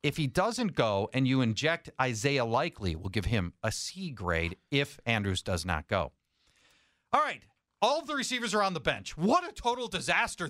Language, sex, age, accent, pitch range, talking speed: English, male, 40-59, American, 125-190 Hz, 195 wpm